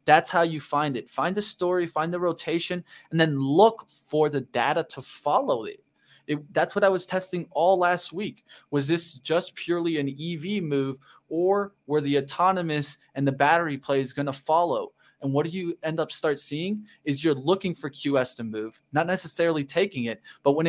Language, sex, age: English, male, 20-39